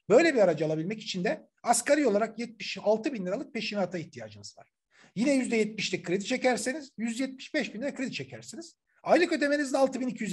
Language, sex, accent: Turkish, male, native